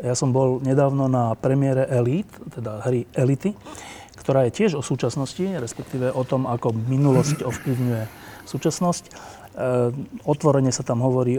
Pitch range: 115-135 Hz